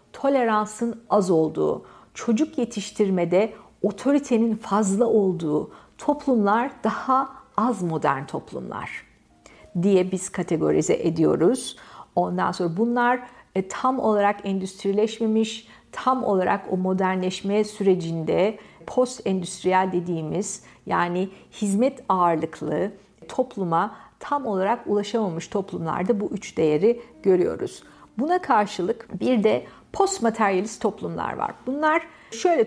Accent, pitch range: native, 185-240 Hz